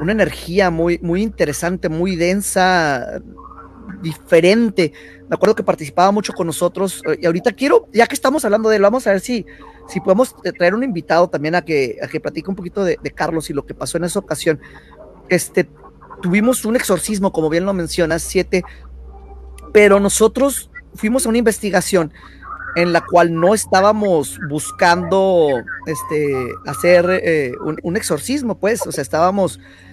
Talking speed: 160 wpm